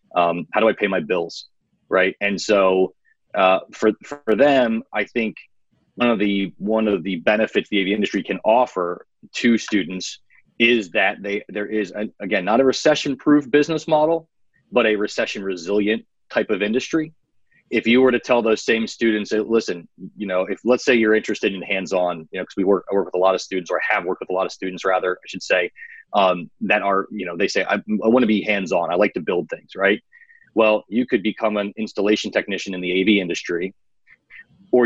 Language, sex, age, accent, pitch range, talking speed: English, male, 30-49, American, 95-115 Hz, 215 wpm